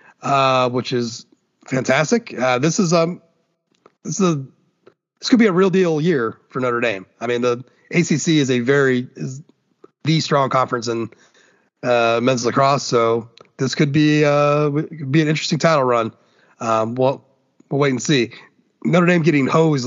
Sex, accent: male, American